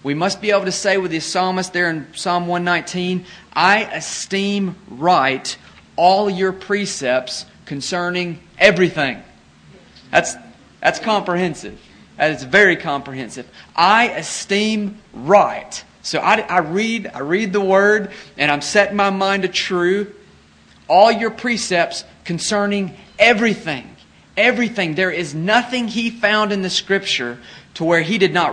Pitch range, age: 150-200 Hz, 40-59